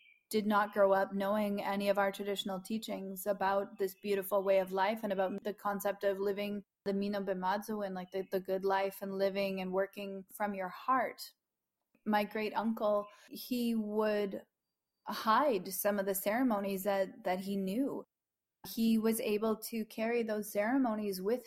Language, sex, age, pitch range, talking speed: English, female, 30-49, 200-225 Hz, 165 wpm